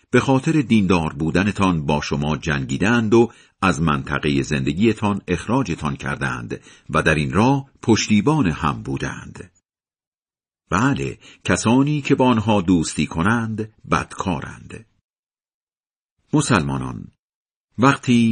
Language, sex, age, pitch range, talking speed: Persian, male, 50-69, 75-115 Hz, 100 wpm